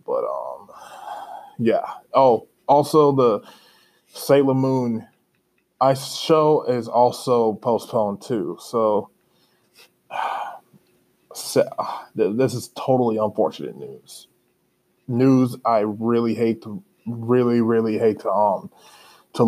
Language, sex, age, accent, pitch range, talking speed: English, male, 20-39, American, 110-135 Hz, 100 wpm